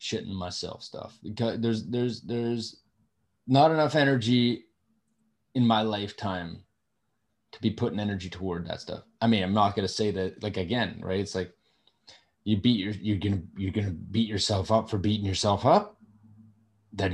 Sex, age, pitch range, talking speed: male, 20-39, 100-125 Hz, 165 wpm